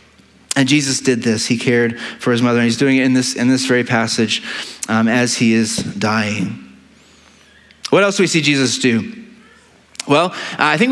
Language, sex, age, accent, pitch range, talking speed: English, male, 30-49, American, 130-170 Hz, 190 wpm